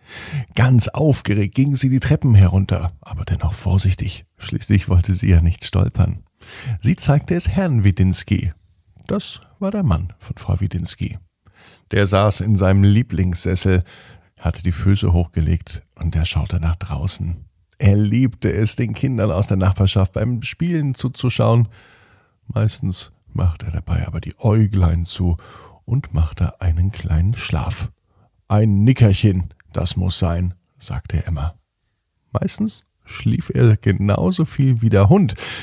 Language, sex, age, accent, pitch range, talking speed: German, male, 50-69, German, 90-115 Hz, 135 wpm